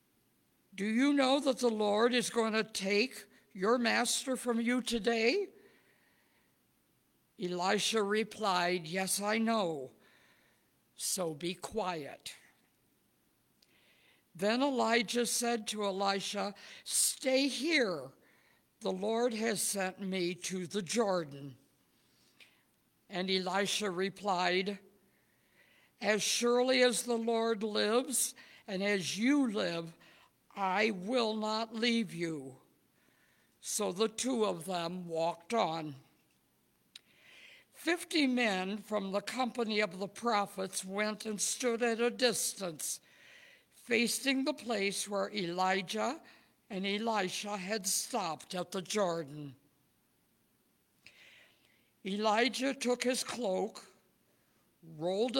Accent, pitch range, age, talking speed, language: American, 190-240 Hz, 60-79, 100 wpm, English